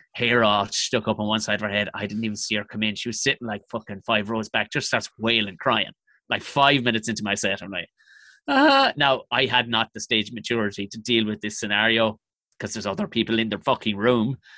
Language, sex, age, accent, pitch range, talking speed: English, male, 30-49, Irish, 115-175 Hz, 240 wpm